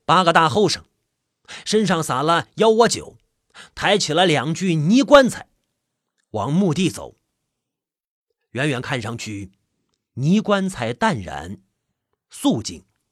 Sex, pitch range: male, 125-210 Hz